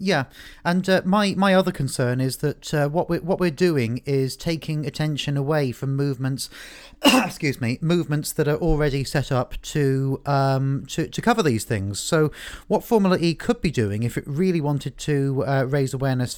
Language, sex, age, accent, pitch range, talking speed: English, male, 40-59, British, 125-155 Hz, 185 wpm